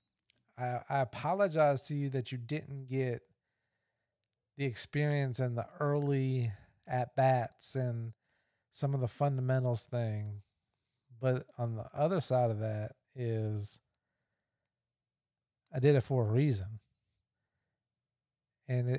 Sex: male